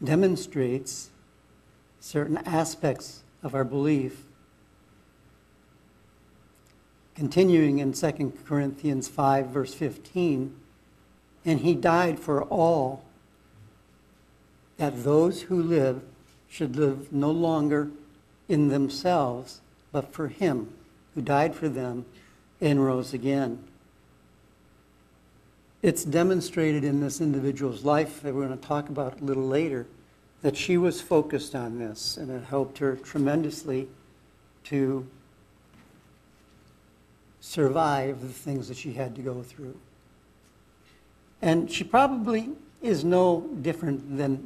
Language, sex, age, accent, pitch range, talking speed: English, male, 60-79, American, 130-155 Hz, 110 wpm